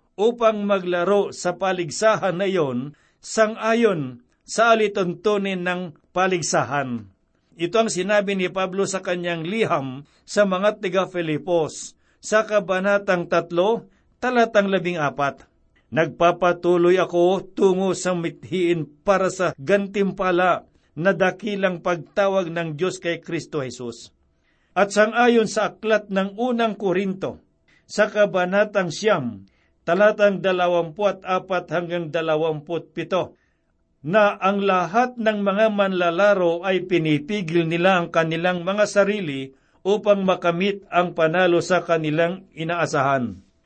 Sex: male